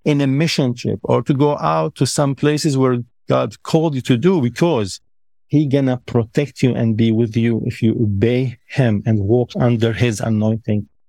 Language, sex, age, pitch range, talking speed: English, male, 50-69, 110-130 Hz, 190 wpm